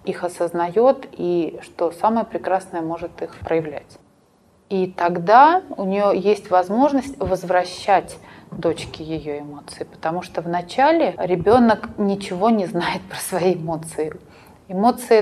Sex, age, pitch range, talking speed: female, 30-49, 175-210 Hz, 120 wpm